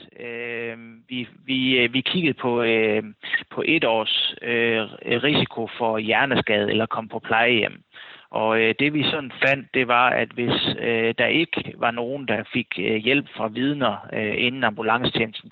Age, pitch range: 30-49, 110-125 Hz